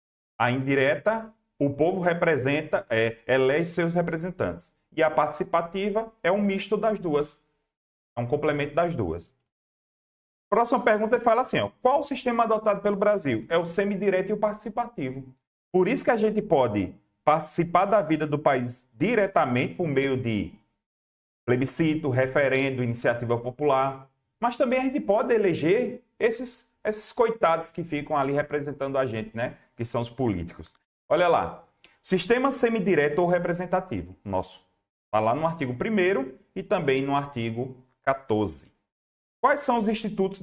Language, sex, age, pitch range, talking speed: Portuguese, male, 30-49, 125-200 Hz, 150 wpm